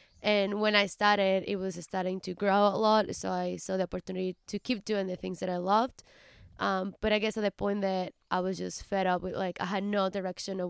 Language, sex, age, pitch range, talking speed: English, female, 20-39, 185-210 Hz, 245 wpm